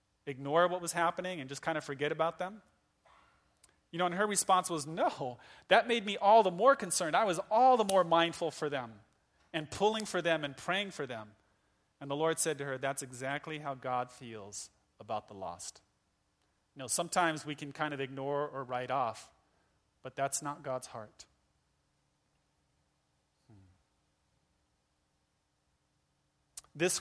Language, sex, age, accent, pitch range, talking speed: English, male, 30-49, American, 130-165 Hz, 160 wpm